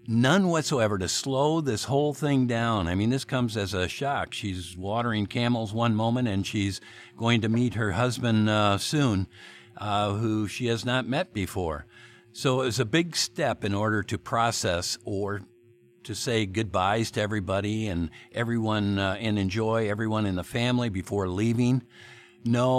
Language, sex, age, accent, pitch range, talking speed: English, male, 50-69, American, 100-120 Hz, 170 wpm